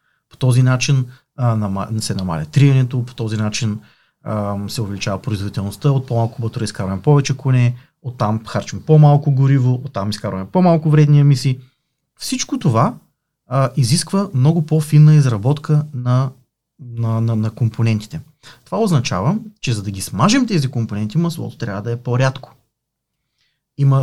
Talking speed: 135 wpm